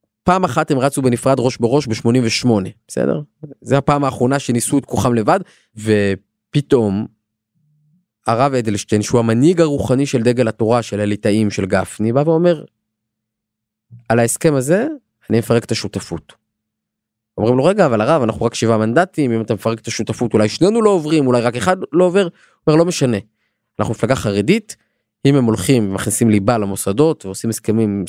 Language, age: Hebrew, 20-39